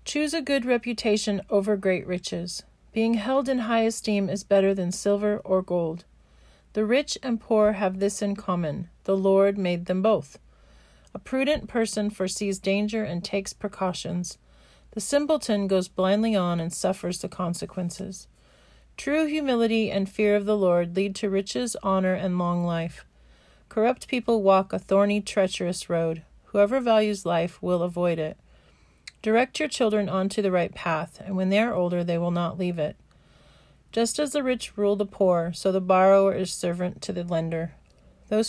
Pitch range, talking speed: 175-210 Hz, 170 wpm